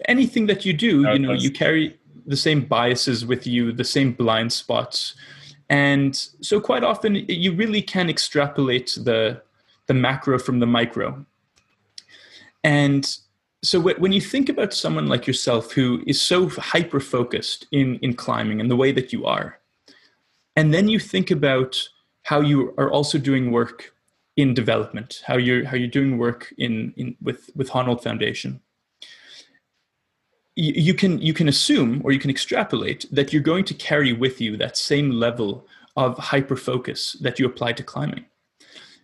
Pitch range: 125-155 Hz